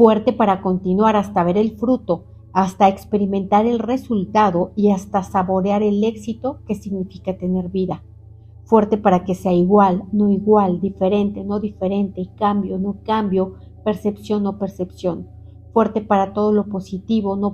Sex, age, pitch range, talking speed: female, 50-69, 185-215 Hz, 145 wpm